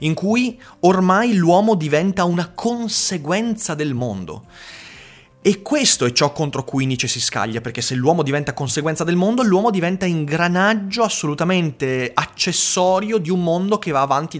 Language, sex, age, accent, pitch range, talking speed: Italian, male, 30-49, native, 125-185 Hz, 150 wpm